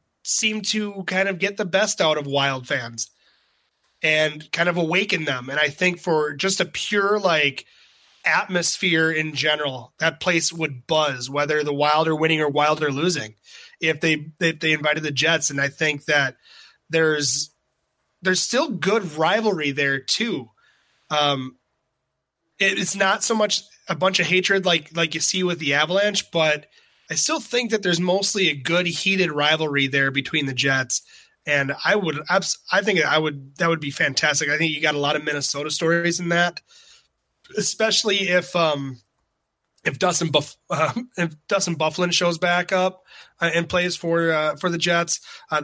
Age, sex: 20-39, male